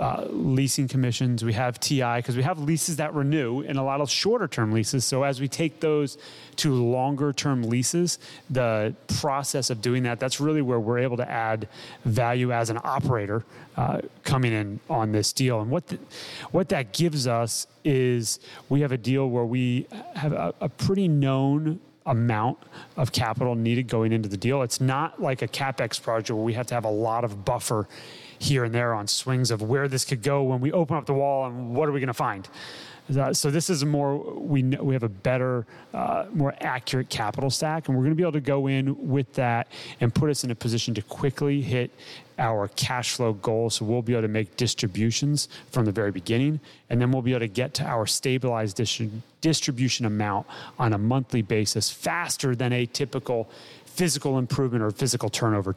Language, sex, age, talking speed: English, male, 30-49, 200 wpm